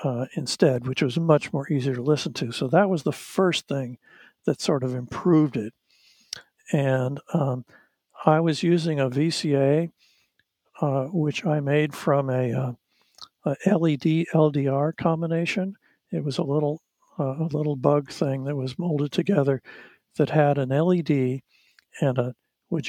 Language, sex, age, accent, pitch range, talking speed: English, male, 60-79, American, 130-160 Hz, 155 wpm